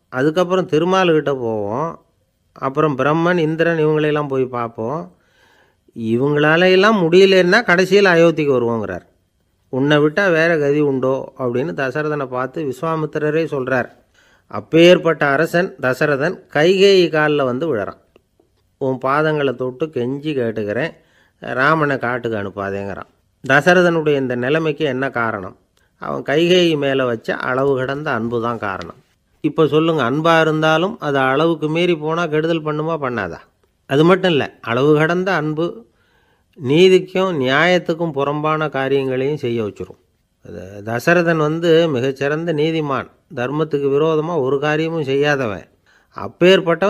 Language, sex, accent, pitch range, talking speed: Tamil, male, native, 130-165 Hz, 110 wpm